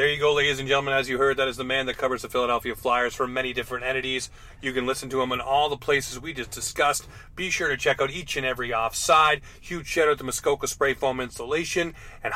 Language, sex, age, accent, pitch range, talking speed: English, male, 30-49, American, 125-145 Hz, 255 wpm